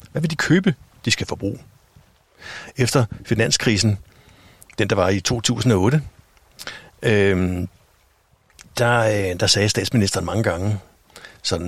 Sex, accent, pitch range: male, native, 95-120 Hz